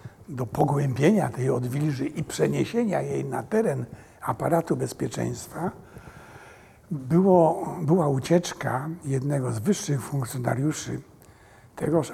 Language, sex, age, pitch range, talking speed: Polish, male, 60-79, 125-160 Hz, 95 wpm